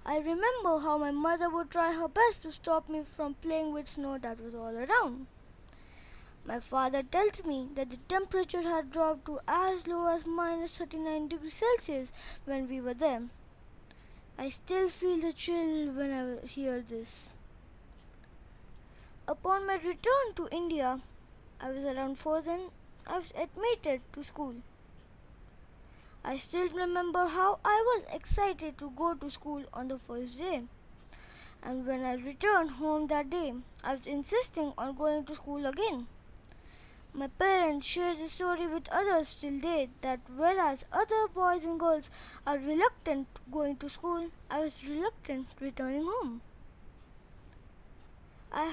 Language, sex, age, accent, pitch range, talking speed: English, female, 20-39, Indian, 275-350 Hz, 150 wpm